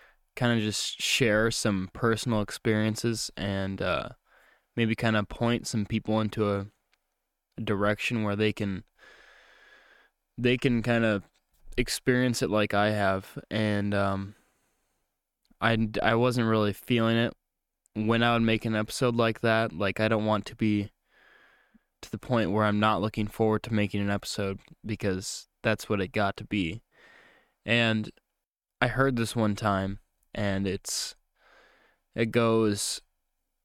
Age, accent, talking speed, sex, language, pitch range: 10-29, American, 145 wpm, male, English, 100-115 Hz